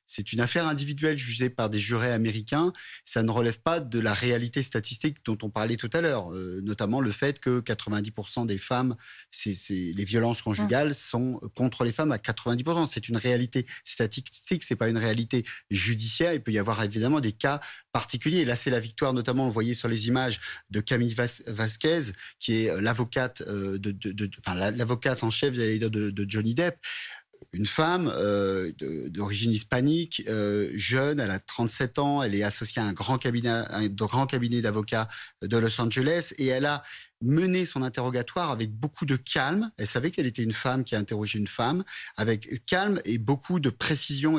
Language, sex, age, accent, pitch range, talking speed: French, male, 30-49, French, 110-140 Hz, 195 wpm